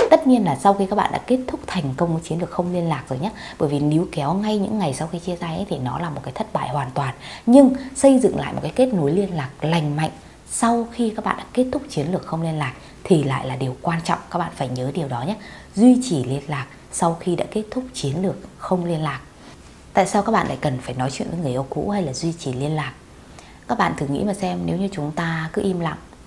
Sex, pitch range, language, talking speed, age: female, 145-195 Hz, Vietnamese, 280 wpm, 20-39